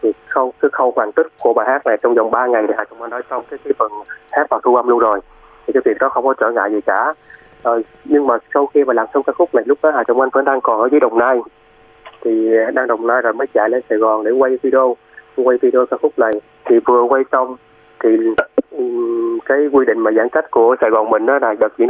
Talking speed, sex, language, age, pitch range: 270 wpm, male, Vietnamese, 20-39, 115-170 Hz